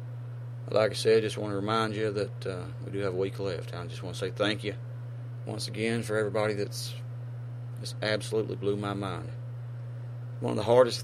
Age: 40-59